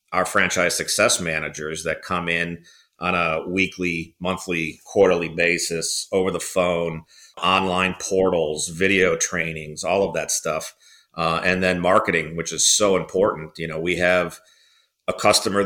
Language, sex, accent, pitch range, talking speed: English, male, American, 80-95 Hz, 145 wpm